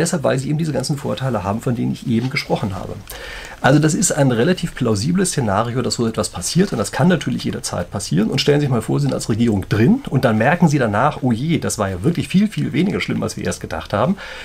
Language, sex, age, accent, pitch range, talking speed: German, male, 40-59, German, 115-160 Hz, 260 wpm